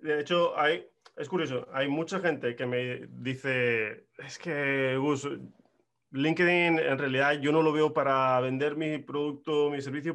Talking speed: 150 wpm